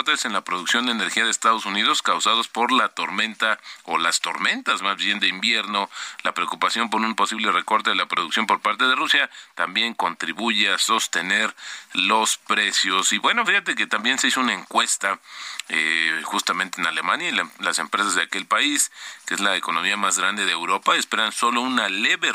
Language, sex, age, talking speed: Spanish, male, 40-59, 190 wpm